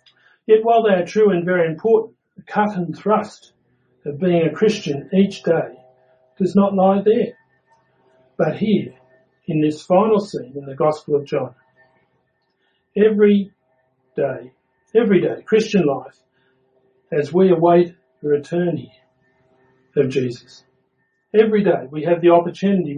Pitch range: 130-185 Hz